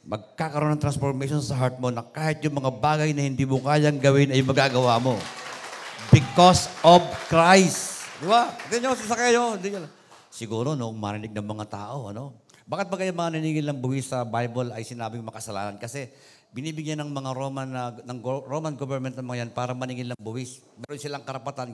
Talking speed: 180 wpm